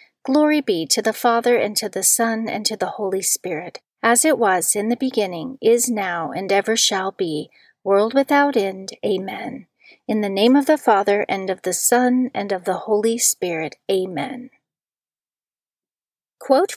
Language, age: English, 40-59